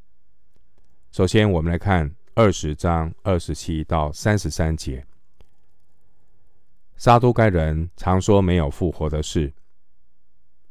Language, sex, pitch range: Chinese, male, 80-95 Hz